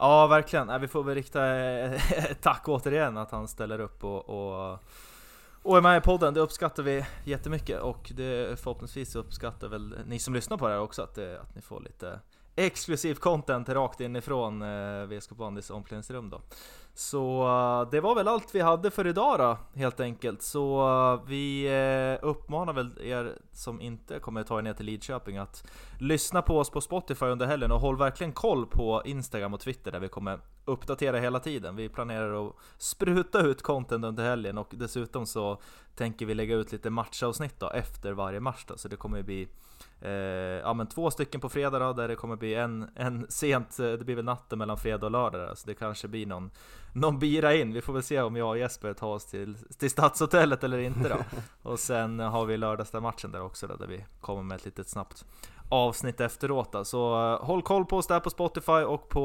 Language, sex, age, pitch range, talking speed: Swedish, male, 20-39, 110-140 Hz, 200 wpm